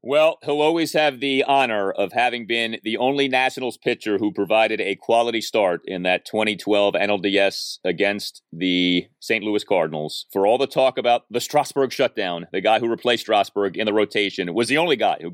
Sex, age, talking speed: male, 40-59, 190 wpm